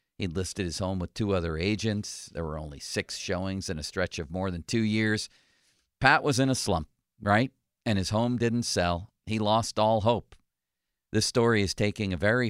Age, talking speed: 50-69, 200 wpm